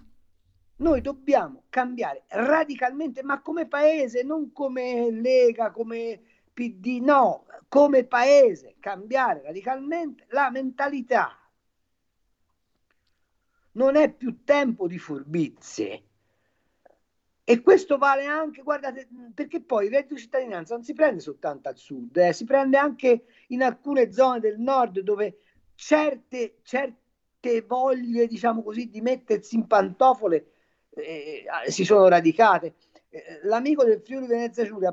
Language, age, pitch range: Italian, 50-69, 190-270 Hz